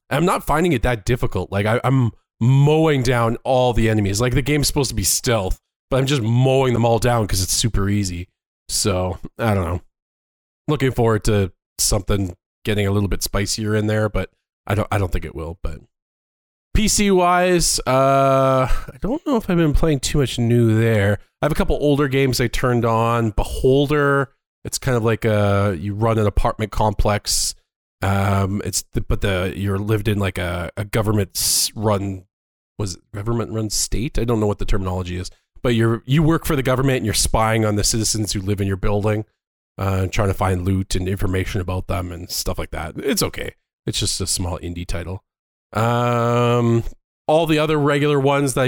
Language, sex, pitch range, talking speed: English, male, 100-125 Hz, 195 wpm